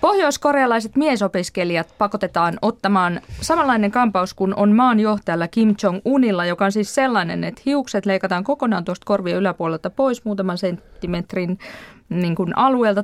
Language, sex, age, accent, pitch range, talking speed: Finnish, female, 20-39, native, 175-225 Hz, 130 wpm